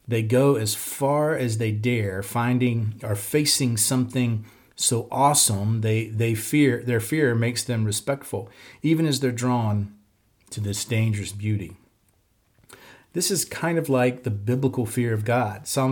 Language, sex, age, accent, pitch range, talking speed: English, male, 40-59, American, 110-135 Hz, 150 wpm